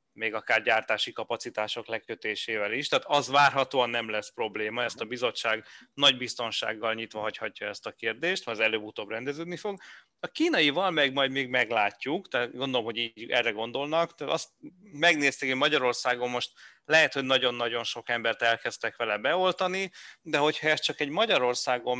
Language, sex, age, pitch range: Hungarian, male, 30-49, 115-145 Hz